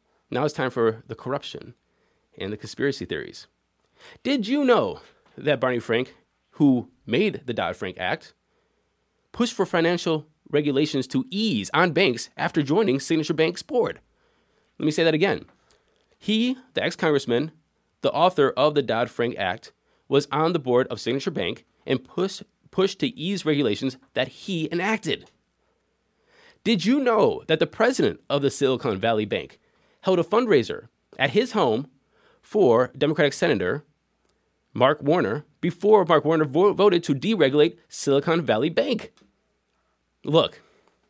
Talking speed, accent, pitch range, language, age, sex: 140 wpm, American, 130-175 Hz, English, 20-39, male